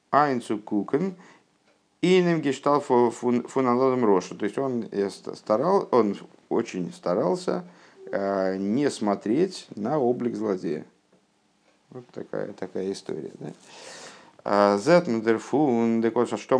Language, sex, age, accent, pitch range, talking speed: Russian, male, 50-69, native, 100-135 Hz, 125 wpm